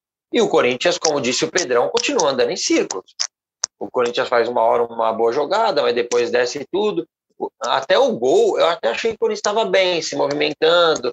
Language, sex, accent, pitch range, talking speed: Portuguese, male, Brazilian, 150-235 Hz, 195 wpm